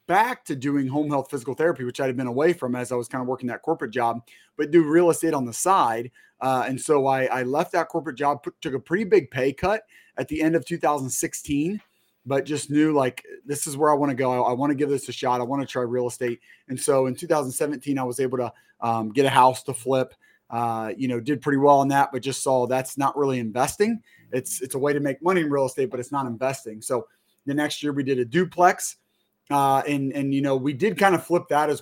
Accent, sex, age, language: American, male, 30-49, English